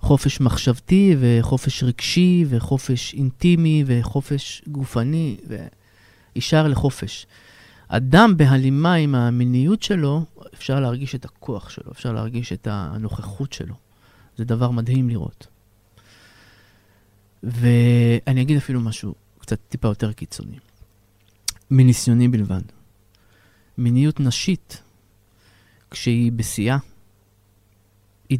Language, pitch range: Hebrew, 100-140 Hz